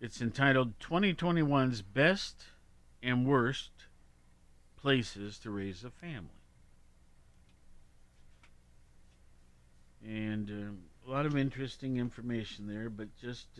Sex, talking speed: male, 95 wpm